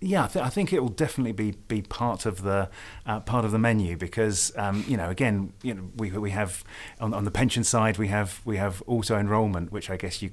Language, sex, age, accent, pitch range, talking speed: English, male, 30-49, British, 95-105 Hz, 250 wpm